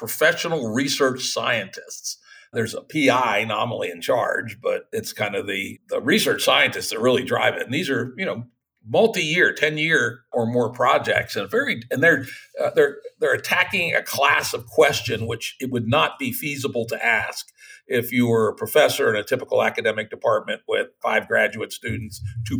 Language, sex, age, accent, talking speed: English, male, 60-79, American, 175 wpm